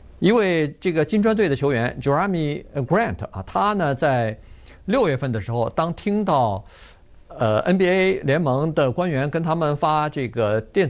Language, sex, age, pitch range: Chinese, male, 50-69, 110-160 Hz